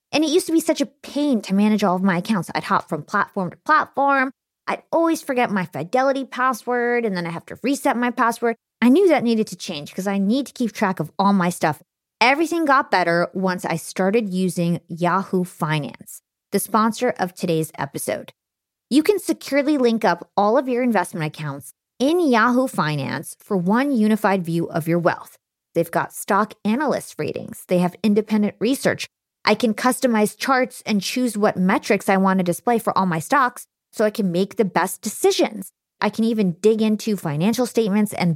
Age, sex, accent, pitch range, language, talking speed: 20-39, female, American, 170-235 Hz, English, 195 wpm